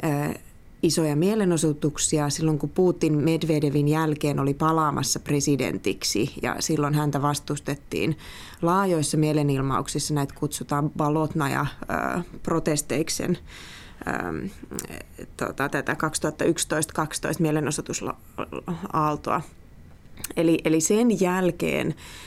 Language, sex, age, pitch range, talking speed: Finnish, female, 20-39, 150-170 Hz, 80 wpm